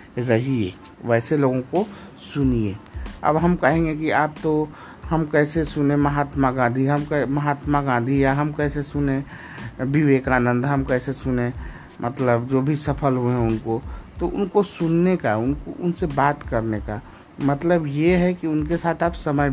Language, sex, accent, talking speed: Hindi, male, native, 155 wpm